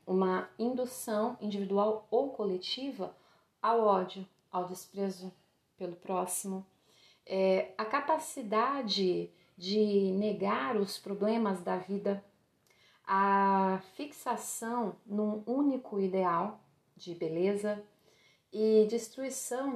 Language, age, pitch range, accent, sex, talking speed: Portuguese, 40-59, 180-215 Hz, Brazilian, female, 85 wpm